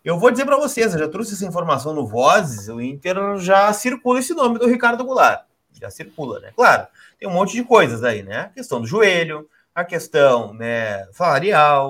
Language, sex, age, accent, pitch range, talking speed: Portuguese, male, 30-49, Brazilian, 115-180 Hz, 195 wpm